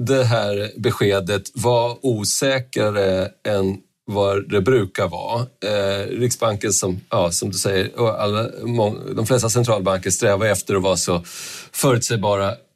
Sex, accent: male, native